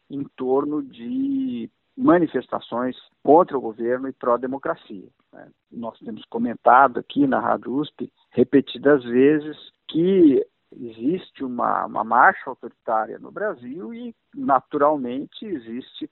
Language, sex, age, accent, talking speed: Portuguese, male, 50-69, Brazilian, 105 wpm